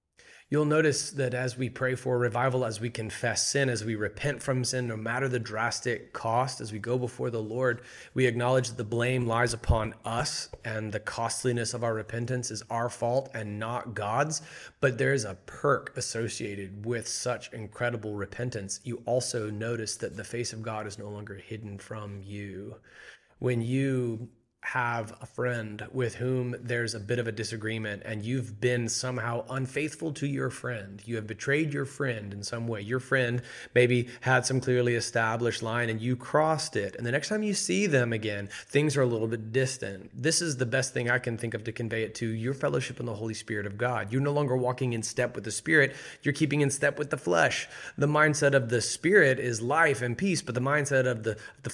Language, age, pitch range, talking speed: English, 30-49, 110-130 Hz, 210 wpm